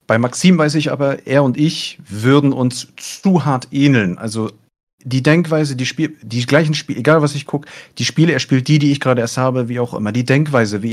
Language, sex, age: German, male, 40-59